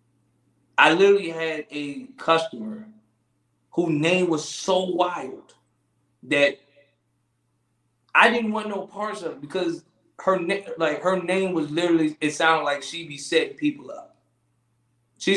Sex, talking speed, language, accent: male, 135 wpm, English, American